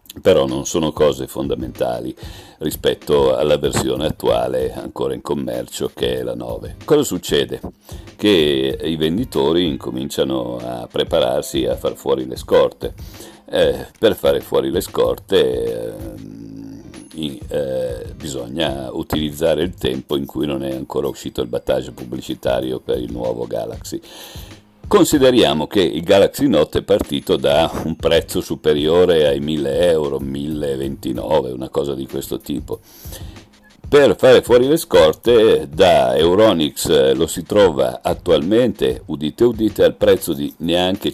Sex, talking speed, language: male, 135 wpm, Italian